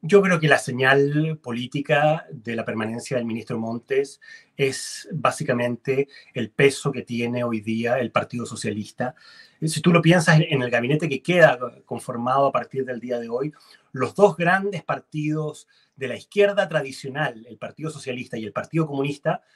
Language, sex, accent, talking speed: Spanish, male, Argentinian, 165 wpm